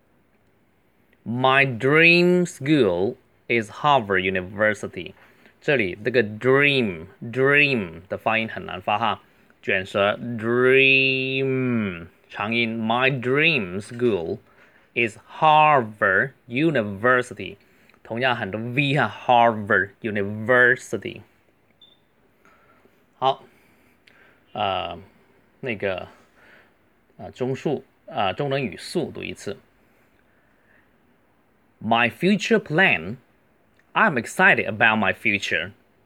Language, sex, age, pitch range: Chinese, male, 20-39, 115-135 Hz